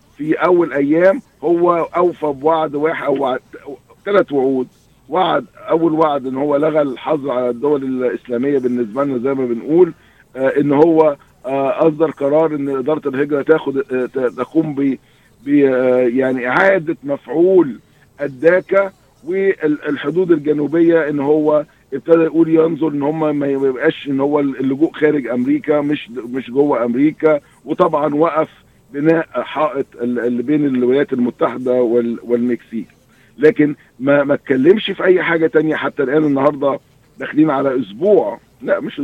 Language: Arabic